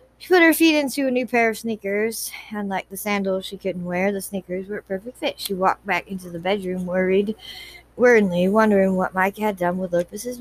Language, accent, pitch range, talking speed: English, American, 185-230 Hz, 215 wpm